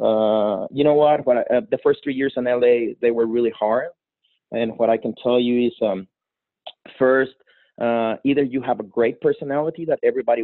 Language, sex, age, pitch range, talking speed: English, male, 30-49, 120-170 Hz, 200 wpm